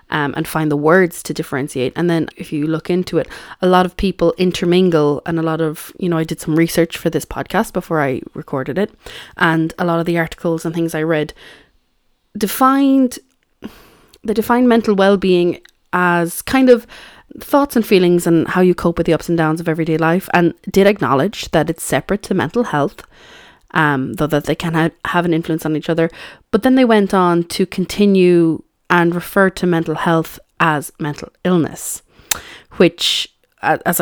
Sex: female